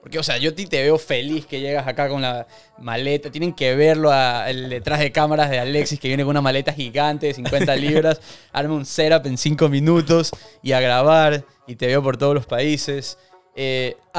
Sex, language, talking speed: male, Spanish, 205 wpm